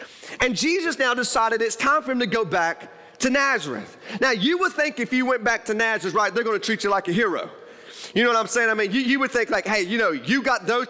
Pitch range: 195-270 Hz